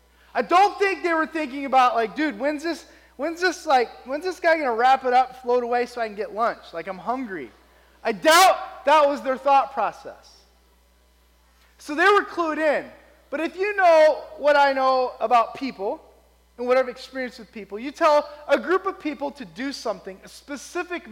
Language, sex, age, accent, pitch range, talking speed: English, male, 20-39, American, 245-320 Hz, 200 wpm